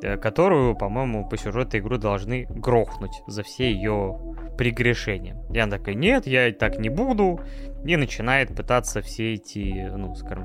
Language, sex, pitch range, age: Russian, male, 110-145 Hz, 20-39